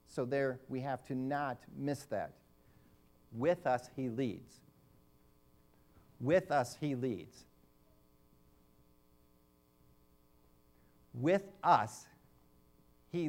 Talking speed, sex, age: 85 wpm, male, 40-59